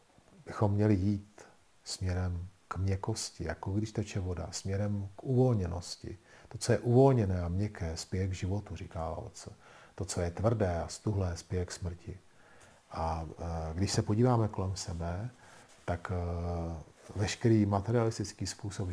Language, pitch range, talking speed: Czech, 90-110 Hz, 135 wpm